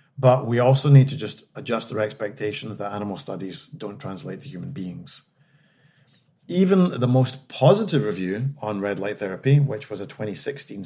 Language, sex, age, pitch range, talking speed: English, male, 40-59, 105-140 Hz, 165 wpm